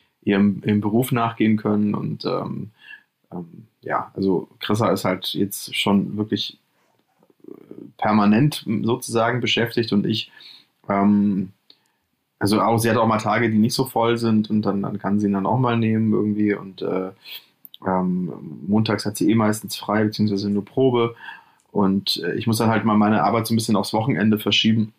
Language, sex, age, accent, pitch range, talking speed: German, male, 20-39, German, 100-115 Hz, 170 wpm